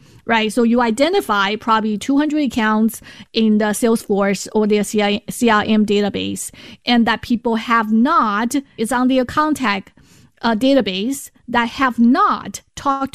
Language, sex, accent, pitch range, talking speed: English, female, American, 210-250 Hz, 130 wpm